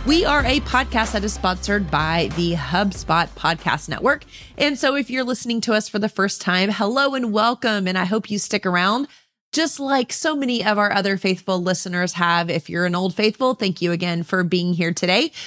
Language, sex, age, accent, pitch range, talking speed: English, female, 30-49, American, 180-240 Hz, 210 wpm